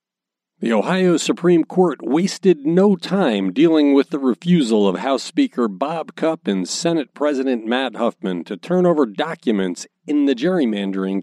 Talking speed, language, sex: 150 wpm, English, male